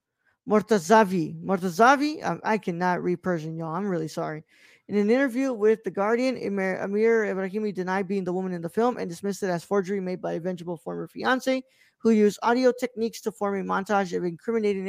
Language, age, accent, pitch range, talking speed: English, 20-39, American, 185-220 Hz, 195 wpm